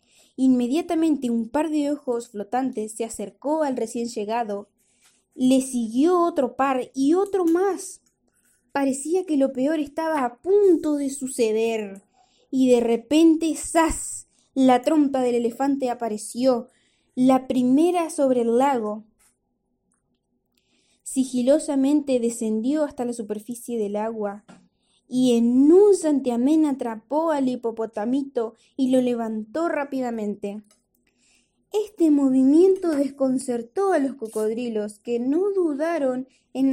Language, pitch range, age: Spanish, 230-295 Hz, 20-39